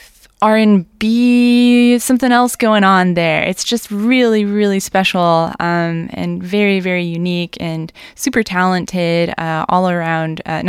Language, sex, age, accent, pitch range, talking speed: English, female, 10-29, American, 175-215 Hz, 130 wpm